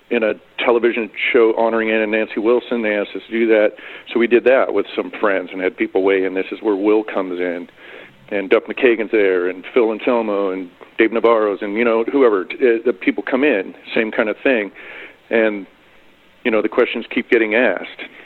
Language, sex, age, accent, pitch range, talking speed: English, male, 50-69, American, 100-125 Hz, 205 wpm